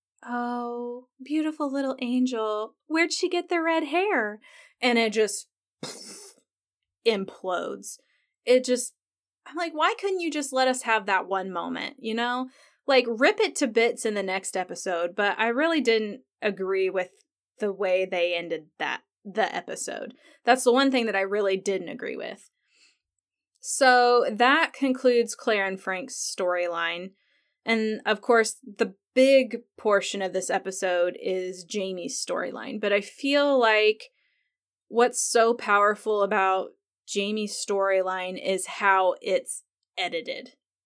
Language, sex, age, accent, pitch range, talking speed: English, female, 20-39, American, 195-270 Hz, 140 wpm